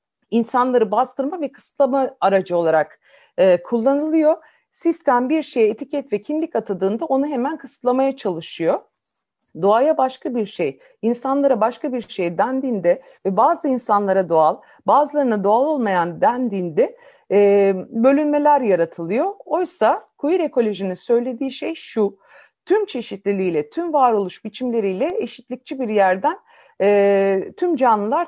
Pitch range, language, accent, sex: 200-280 Hz, Turkish, native, female